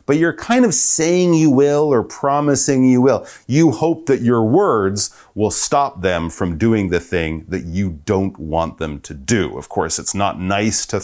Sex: male